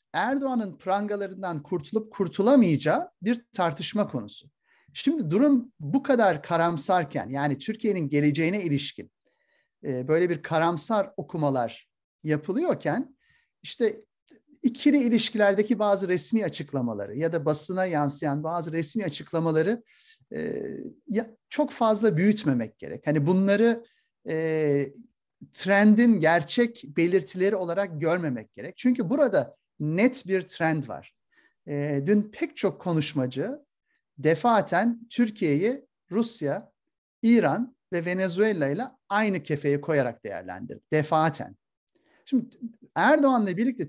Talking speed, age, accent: 100 wpm, 40-59, native